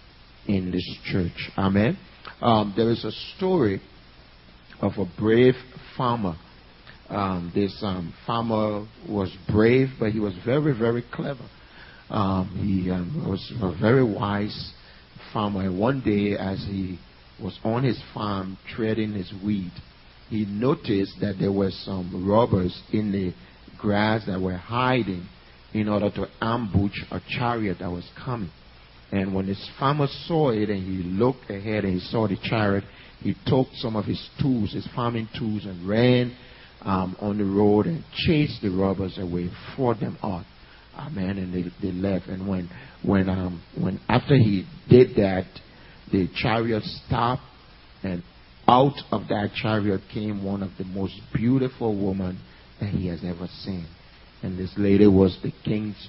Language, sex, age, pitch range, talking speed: English, male, 50-69, 95-115 Hz, 155 wpm